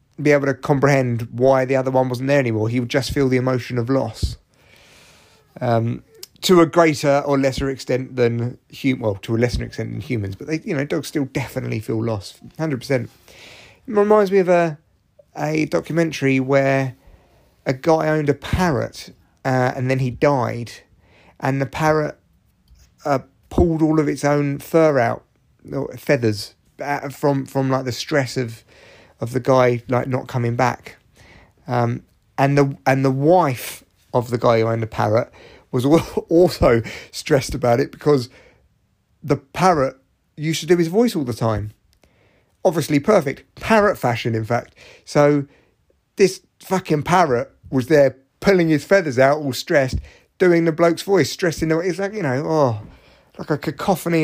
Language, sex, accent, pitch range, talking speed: English, male, British, 120-155 Hz, 170 wpm